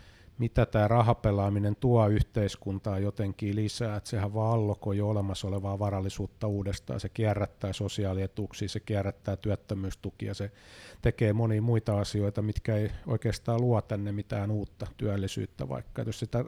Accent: native